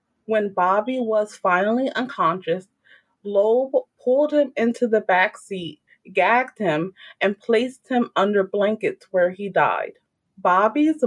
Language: English